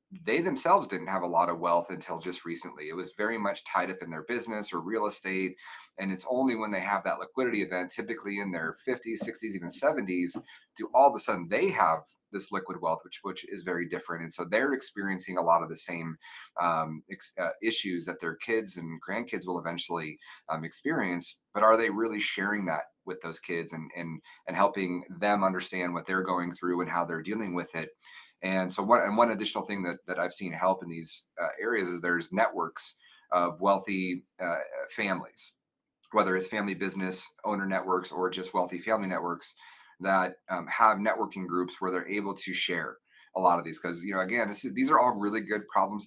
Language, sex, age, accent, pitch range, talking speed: English, male, 30-49, American, 85-100 Hz, 210 wpm